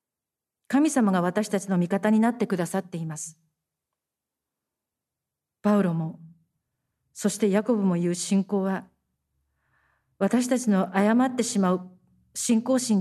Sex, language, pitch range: female, Japanese, 170-235 Hz